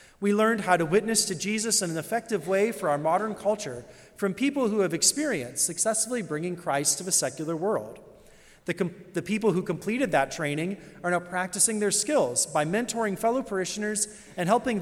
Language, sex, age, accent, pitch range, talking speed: English, male, 30-49, American, 155-210 Hz, 180 wpm